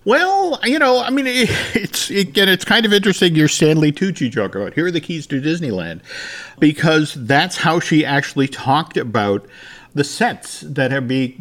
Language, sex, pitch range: English, male, 115-150 Hz